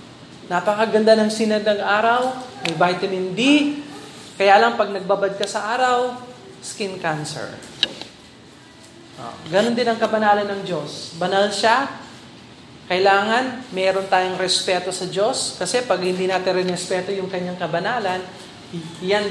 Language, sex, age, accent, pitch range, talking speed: Filipino, male, 20-39, native, 185-245 Hz, 120 wpm